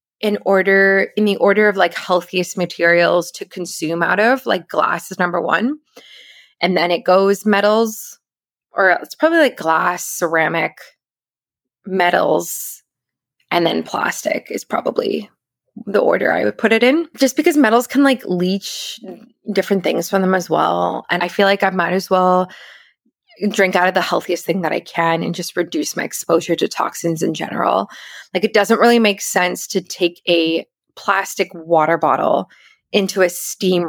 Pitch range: 170-205 Hz